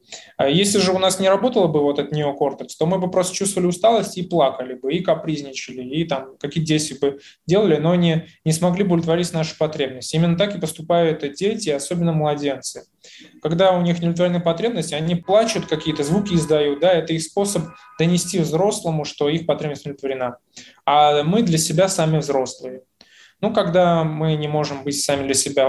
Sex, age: male, 20-39